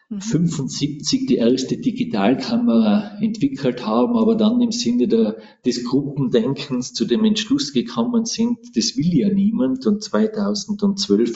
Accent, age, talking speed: Swiss, 40-59, 125 wpm